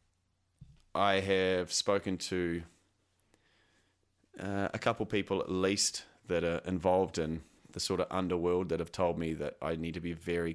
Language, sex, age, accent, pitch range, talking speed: English, male, 30-49, Australian, 85-95 Hz, 160 wpm